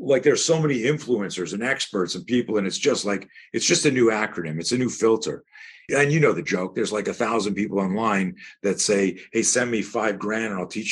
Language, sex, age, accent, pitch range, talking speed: English, male, 40-59, American, 95-120 Hz, 235 wpm